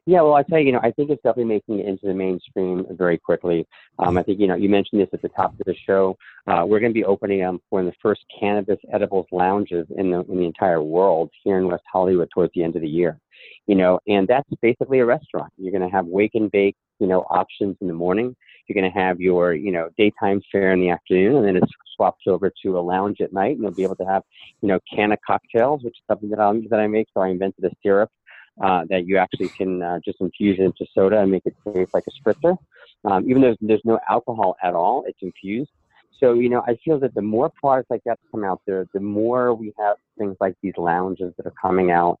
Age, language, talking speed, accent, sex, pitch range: 40-59, English, 260 wpm, American, male, 95-115 Hz